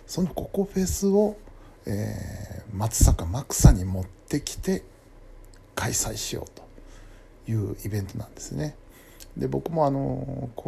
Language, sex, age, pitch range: Japanese, male, 60-79, 95-130 Hz